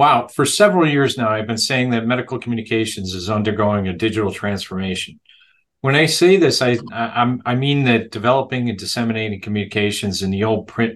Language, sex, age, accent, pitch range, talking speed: English, male, 40-59, American, 105-130 Hz, 175 wpm